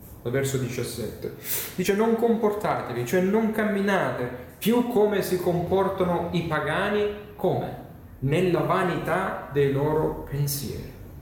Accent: native